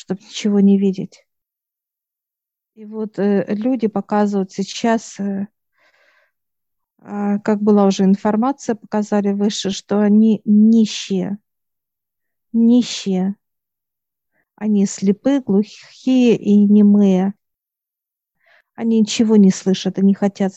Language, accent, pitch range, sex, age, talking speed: Russian, native, 195-215 Hz, female, 50-69, 95 wpm